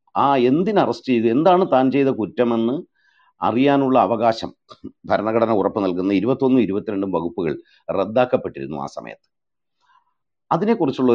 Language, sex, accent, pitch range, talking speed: Malayalam, male, native, 105-130 Hz, 110 wpm